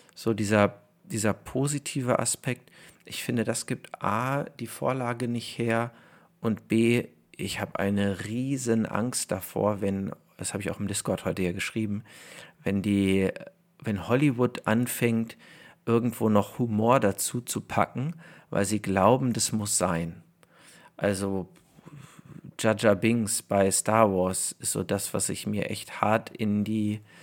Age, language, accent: 50-69, German, German